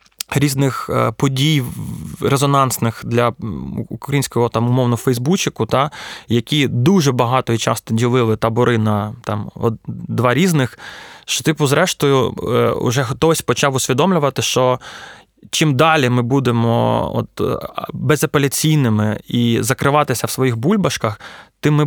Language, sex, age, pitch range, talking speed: Ukrainian, male, 20-39, 115-140 Hz, 115 wpm